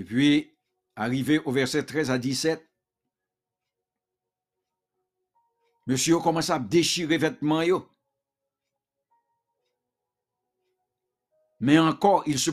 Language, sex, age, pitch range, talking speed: English, male, 60-79, 135-185 Hz, 85 wpm